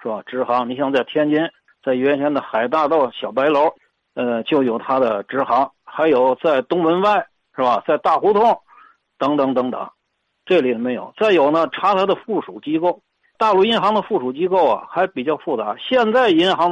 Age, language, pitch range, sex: 60-79, Chinese, 155-230 Hz, male